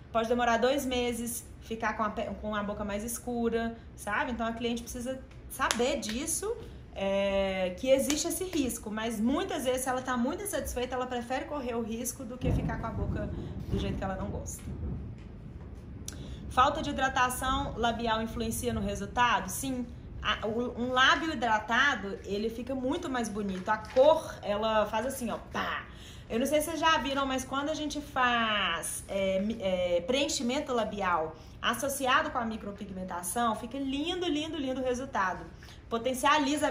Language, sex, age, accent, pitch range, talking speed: Portuguese, female, 20-39, Brazilian, 215-265 Hz, 155 wpm